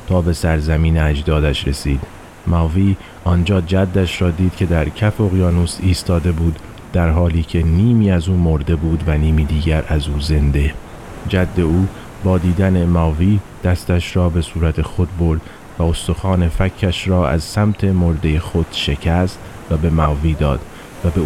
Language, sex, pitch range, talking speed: Persian, male, 80-95 Hz, 160 wpm